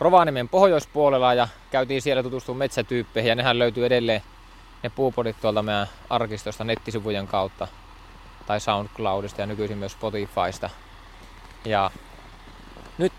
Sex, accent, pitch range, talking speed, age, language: male, native, 100-135 Hz, 115 wpm, 20-39, Finnish